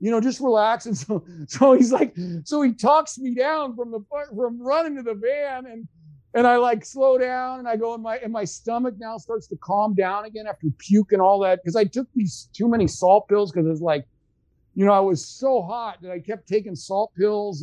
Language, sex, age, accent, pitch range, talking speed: English, male, 50-69, American, 150-215 Hz, 235 wpm